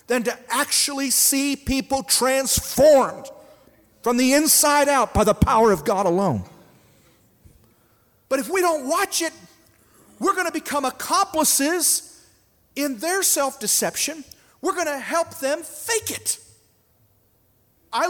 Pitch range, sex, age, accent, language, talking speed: 230-325 Hz, male, 40-59, American, English, 125 wpm